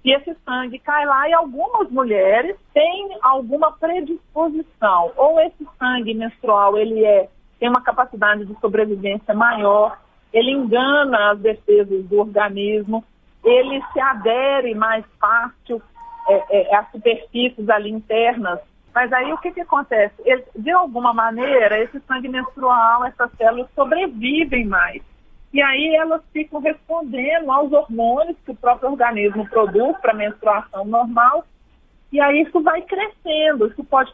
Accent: Brazilian